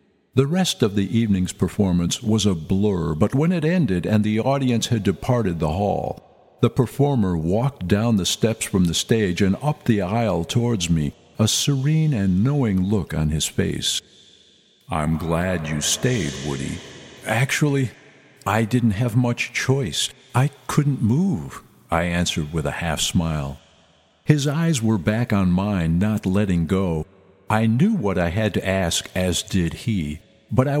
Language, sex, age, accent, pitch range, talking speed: English, male, 50-69, American, 85-125 Hz, 160 wpm